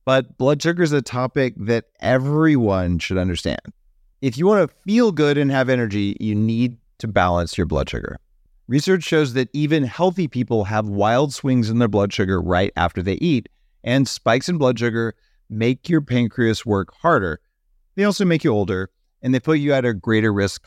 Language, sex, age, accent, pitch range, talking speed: English, male, 40-59, American, 100-145 Hz, 190 wpm